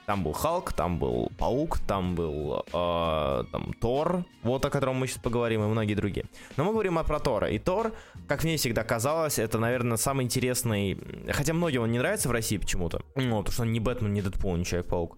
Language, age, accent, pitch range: Russian, 20-39, native, 105-140 Hz